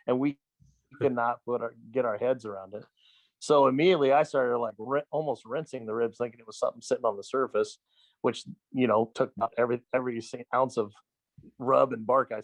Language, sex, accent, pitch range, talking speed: English, male, American, 115-135 Hz, 200 wpm